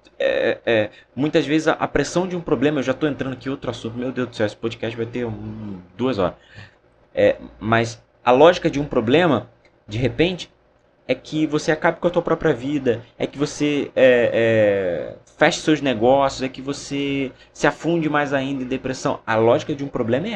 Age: 20-39